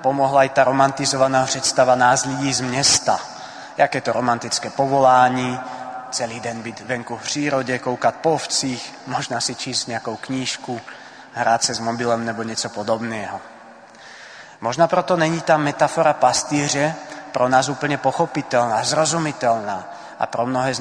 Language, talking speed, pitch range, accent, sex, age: Czech, 140 wpm, 120-140 Hz, native, male, 30-49